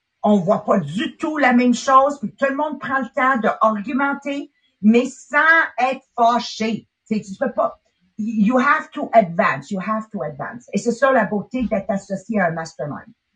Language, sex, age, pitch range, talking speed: English, female, 50-69, 215-270 Hz, 190 wpm